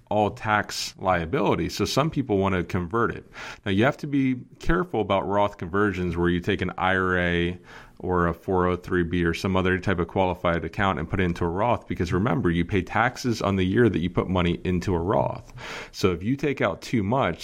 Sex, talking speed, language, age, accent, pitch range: male, 215 wpm, English, 30-49, American, 85-105 Hz